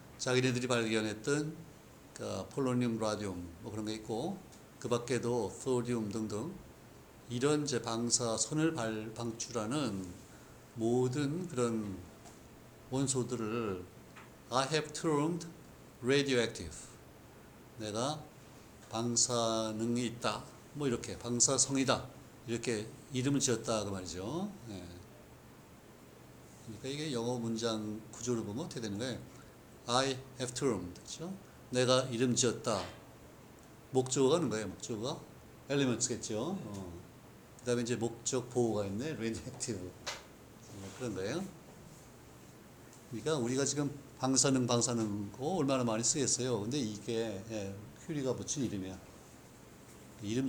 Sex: male